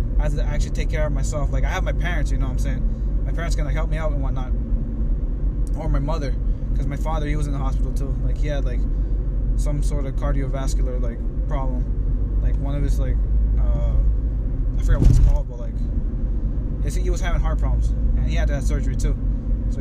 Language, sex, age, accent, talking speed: English, male, 20-39, American, 225 wpm